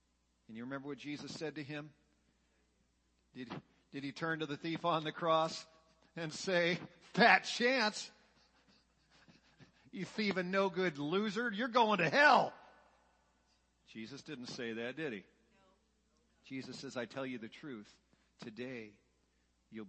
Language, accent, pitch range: English, American, 125-170 Hz